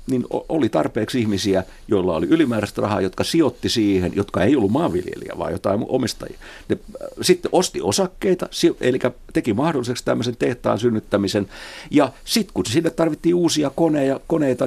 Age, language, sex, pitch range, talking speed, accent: 50-69, Finnish, male, 105-150 Hz, 145 wpm, native